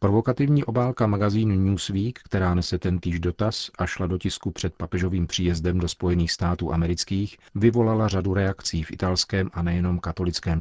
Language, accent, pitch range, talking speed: Czech, native, 85-100 Hz, 155 wpm